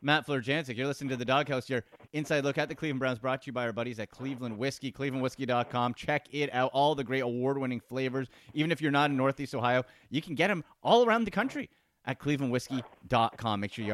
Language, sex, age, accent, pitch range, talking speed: English, male, 30-49, American, 120-150 Hz, 225 wpm